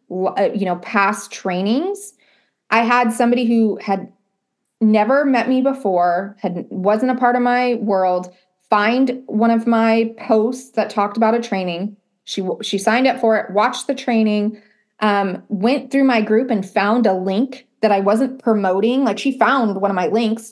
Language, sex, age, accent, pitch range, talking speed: English, female, 20-39, American, 205-245 Hz, 175 wpm